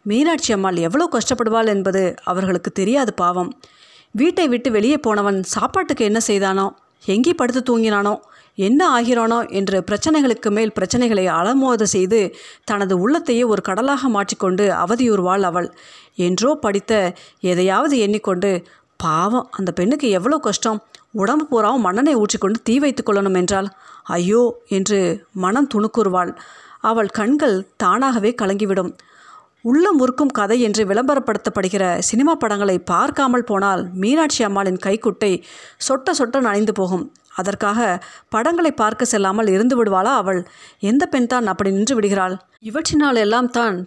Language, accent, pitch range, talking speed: Tamil, native, 195-250 Hz, 125 wpm